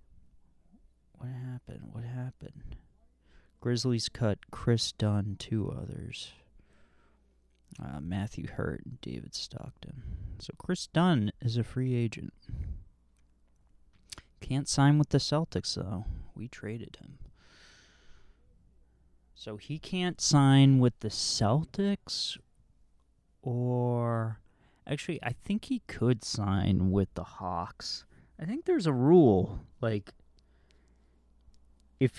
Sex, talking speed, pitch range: male, 105 wpm, 80-125 Hz